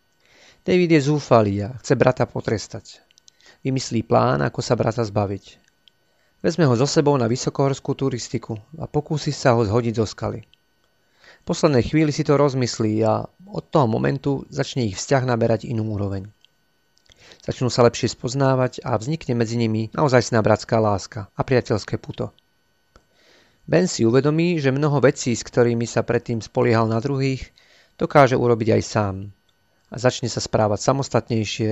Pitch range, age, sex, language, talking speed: 110-135 Hz, 40-59, male, Slovak, 150 wpm